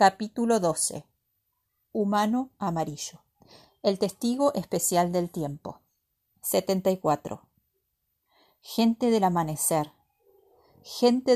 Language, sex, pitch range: Spanish, female, 170-215 Hz